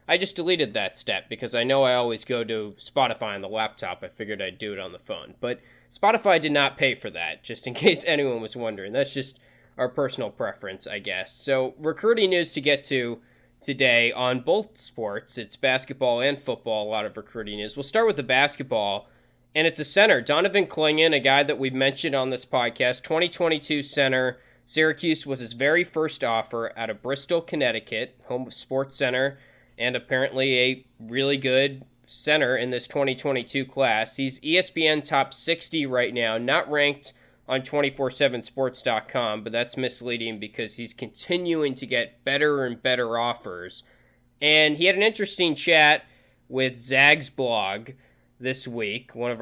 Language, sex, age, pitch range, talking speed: English, male, 20-39, 120-150 Hz, 175 wpm